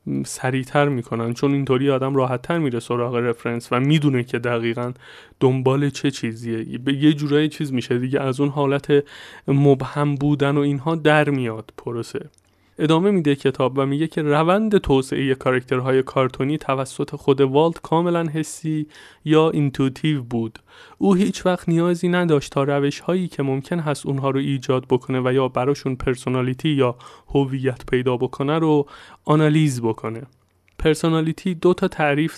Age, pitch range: 30-49, 135-165 Hz